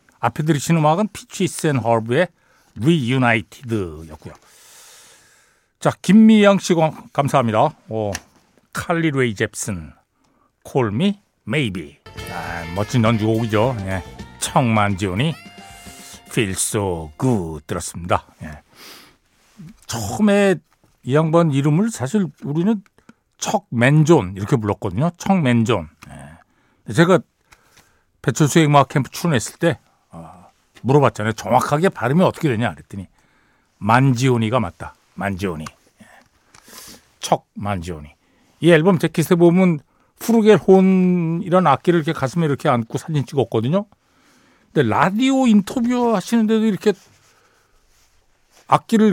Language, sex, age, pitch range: Korean, male, 60-79, 110-185 Hz